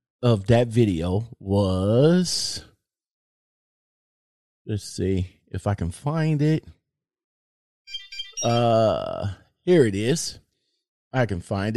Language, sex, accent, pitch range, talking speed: English, male, American, 105-145 Hz, 90 wpm